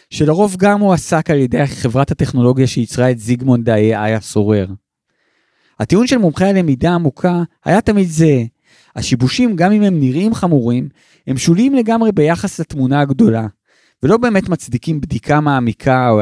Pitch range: 125-175 Hz